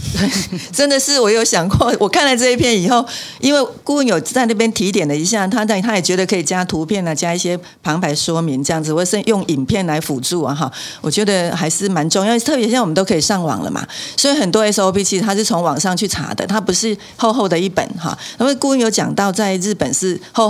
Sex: female